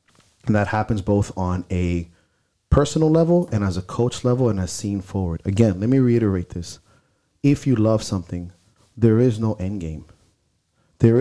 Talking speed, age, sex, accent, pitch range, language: 170 wpm, 30-49, male, American, 100-120 Hz, English